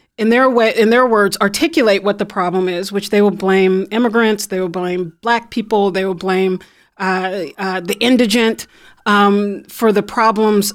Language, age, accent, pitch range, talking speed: English, 30-49, American, 195-230 Hz, 180 wpm